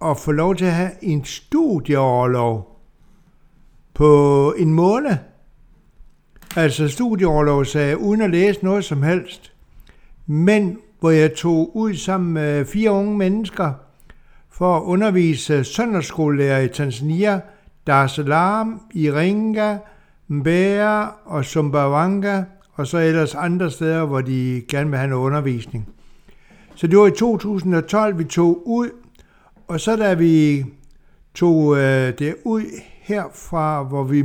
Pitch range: 145-200 Hz